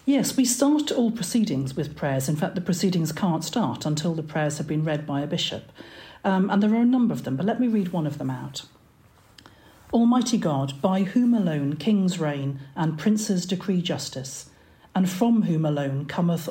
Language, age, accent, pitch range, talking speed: English, 50-69, British, 165-210 Hz, 195 wpm